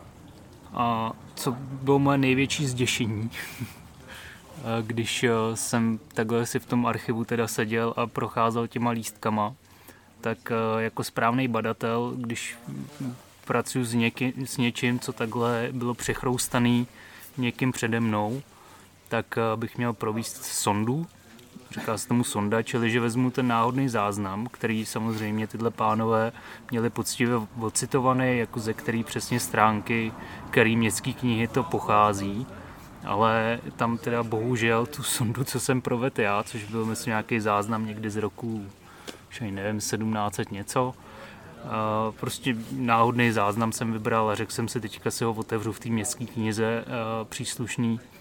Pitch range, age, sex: 110-120 Hz, 20-39, male